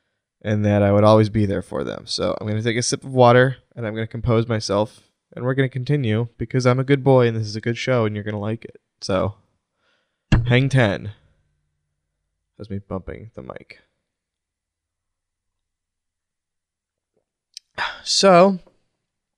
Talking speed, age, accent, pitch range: 170 wpm, 20-39, American, 105-130 Hz